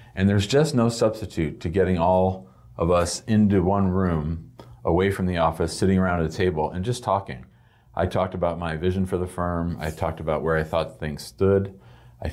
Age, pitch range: 40-59, 85-95 Hz